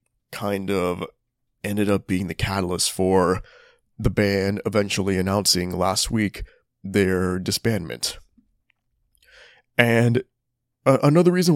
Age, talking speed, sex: 20-39, 105 wpm, male